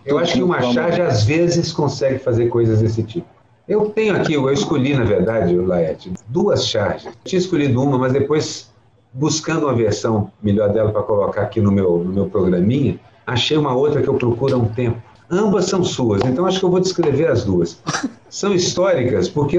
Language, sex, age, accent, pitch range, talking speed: Portuguese, male, 50-69, Brazilian, 115-155 Hz, 195 wpm